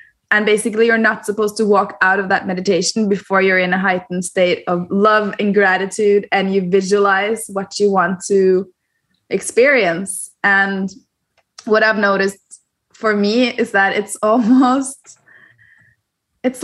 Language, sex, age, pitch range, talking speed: English, female, 20-39, 195-245 Hz, 145 wpm